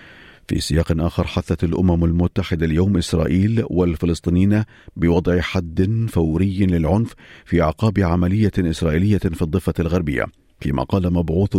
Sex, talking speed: male, 120 wpm